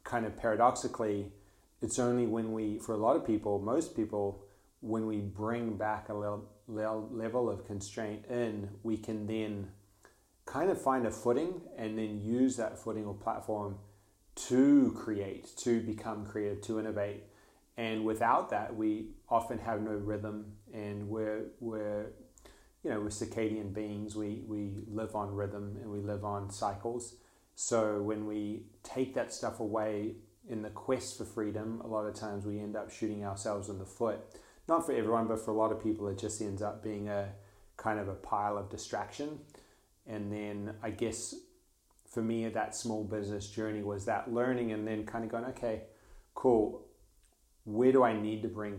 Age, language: 30-49, English